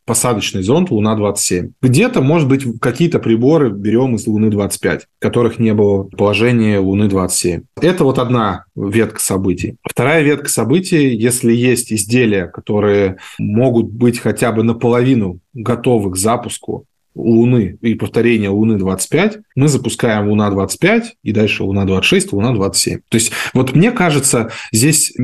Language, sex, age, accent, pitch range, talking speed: Russian, male, 20-39, native, 110-140 Hz, 125 wpm